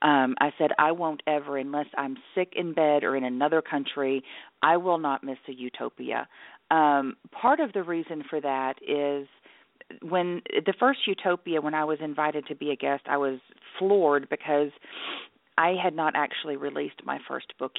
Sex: female